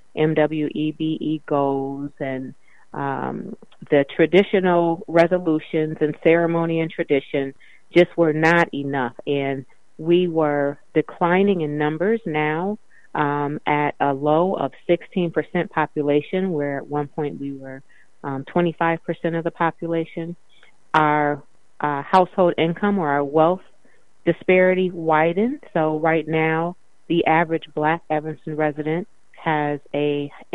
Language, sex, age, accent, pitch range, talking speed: English, female, 30-49, American, 145-170 Hz, 115 wpm